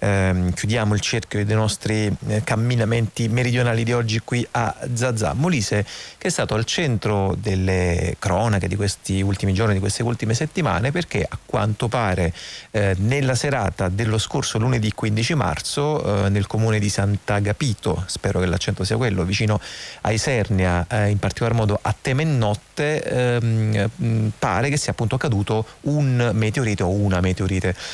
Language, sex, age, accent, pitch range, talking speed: Italian, male, 30-49, native, 100-115 Hz, 150 wpm